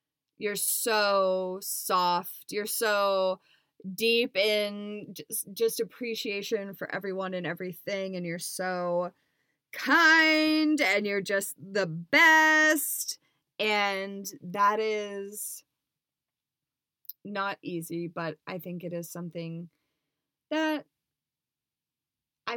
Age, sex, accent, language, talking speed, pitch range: 20-39, female, American, English, 95 wpm, 160-200 Hz